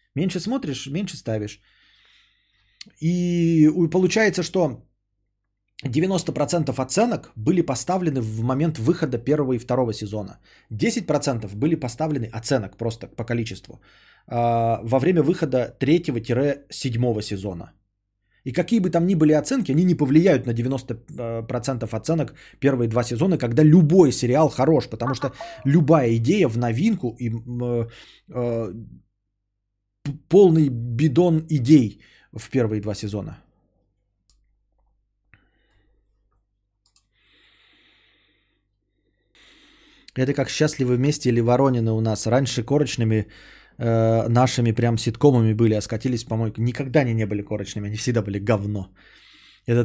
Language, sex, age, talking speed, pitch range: Bulgarian, male, 20-39, 115 wpm, 110-145 Hz